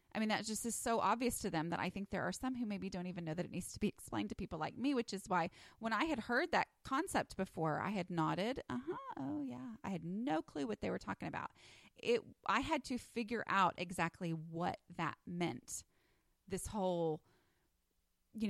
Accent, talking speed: American, 220 wpm